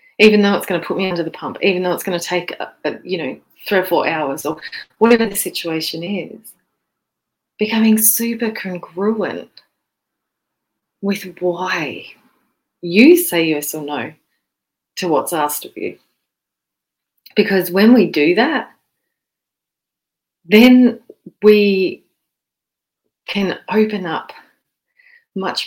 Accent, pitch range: Australian, 175-220 Hz